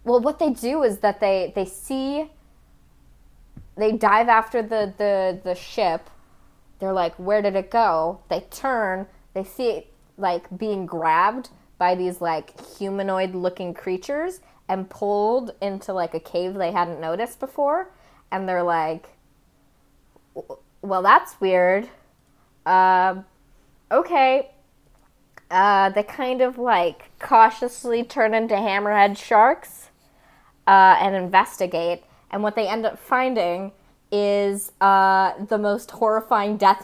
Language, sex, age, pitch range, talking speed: English, female, 20-39, 175-220 Hz, 125 wpm